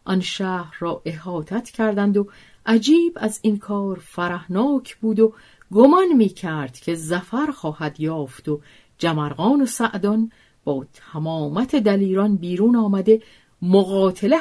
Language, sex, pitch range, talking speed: Persian, female, 155-220 Hz, 125 wpm